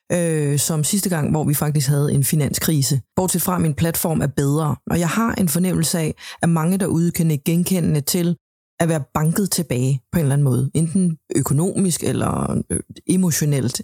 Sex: female